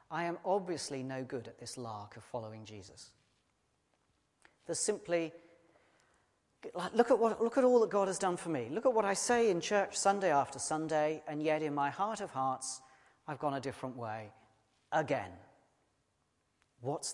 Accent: British